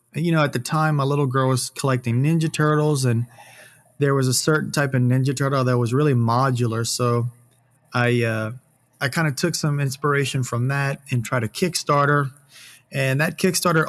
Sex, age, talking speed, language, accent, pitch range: male, 30-49, 185 wpm, English, American, 125-145 Hz